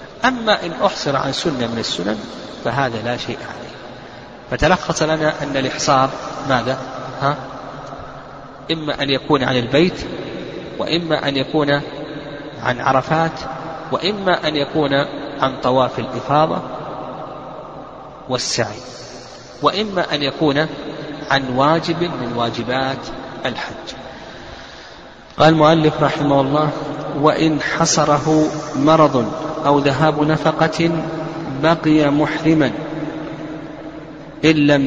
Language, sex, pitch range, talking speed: Arabic, male, 135-155 Hz, 95 wpm